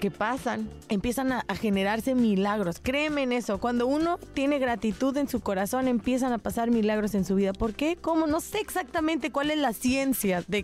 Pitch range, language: 205-260 Hz, Spanish